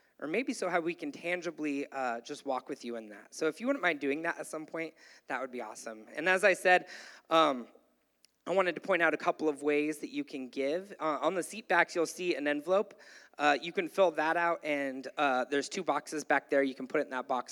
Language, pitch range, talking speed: English, 135-185 Hz, 255 wpm